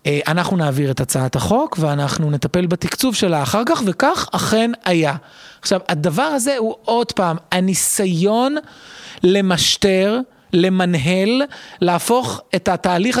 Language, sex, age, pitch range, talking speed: Hebrew, male, 20-39, 165-220 Hz, 120 wpm